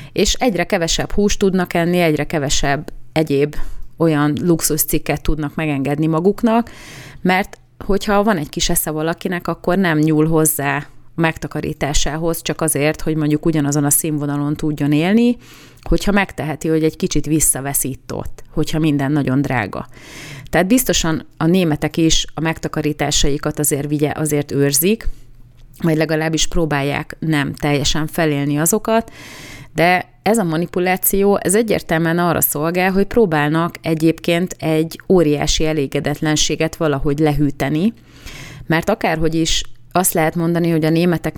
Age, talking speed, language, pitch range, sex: 30-49, 130 wpm, Hungarian, 150-170 Hz, female